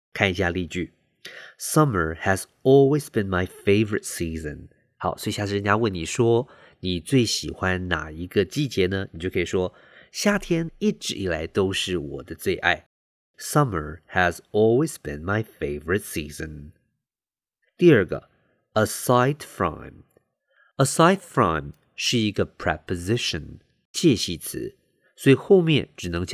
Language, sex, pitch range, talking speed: English, male, 85-130 Hz, 50 wpm